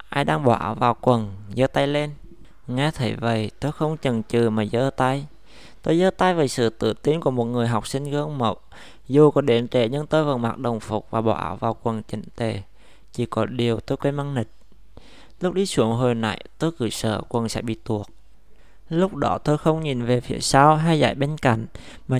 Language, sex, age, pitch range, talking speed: Vietnamese, male, 20-39, 120-150 Hz, 215 wpm